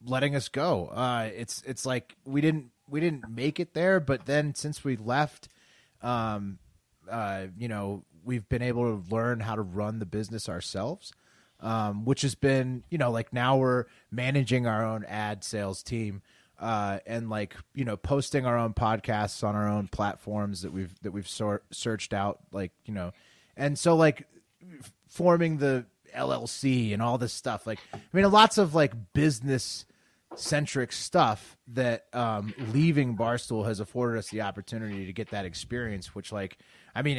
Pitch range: 105-130 Hz